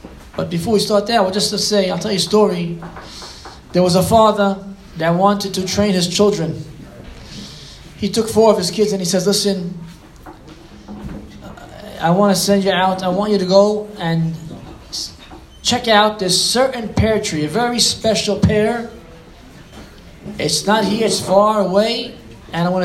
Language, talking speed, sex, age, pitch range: English, 170 wpm, male, 20-39, 180-220 Hz